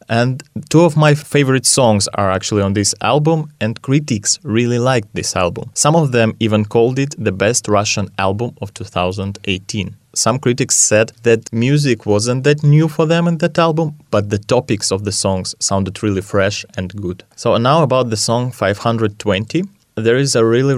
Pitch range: 105-130 Hz